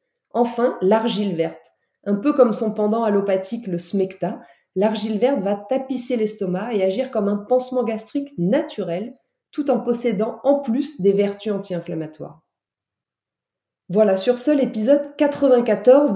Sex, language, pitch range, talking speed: female, French, 190-250 Hz, 135 wpm